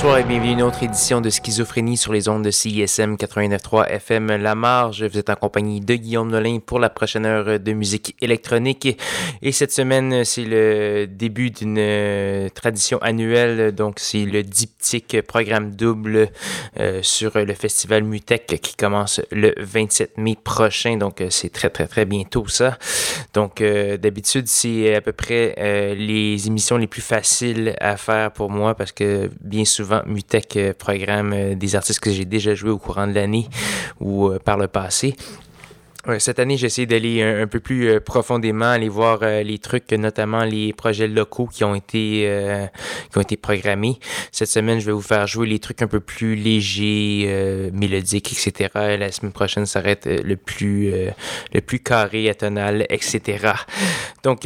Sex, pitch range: male, 105-115 Hz